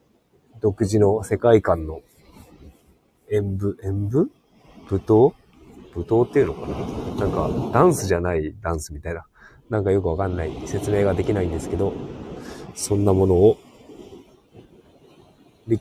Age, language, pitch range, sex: 30-49, Japanese, 90-120 Hz, male